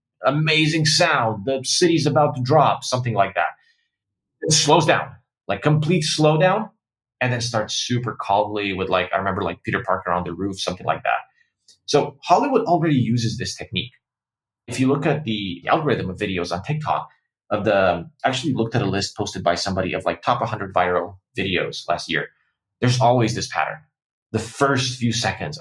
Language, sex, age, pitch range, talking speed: English, male, 30-49, 105-150 Hz, 180 wpm